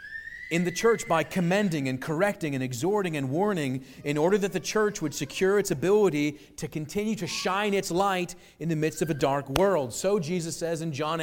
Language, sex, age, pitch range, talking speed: English, male, 40-59, 155-205 Hz, 205 wpm